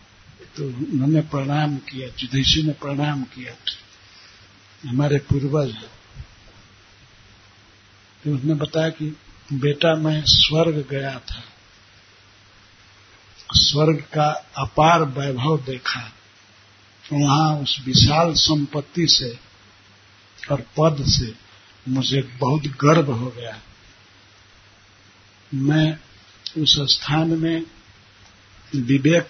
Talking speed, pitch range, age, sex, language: 90 wpm, 100-150 Hz, 60-79, male, Hindi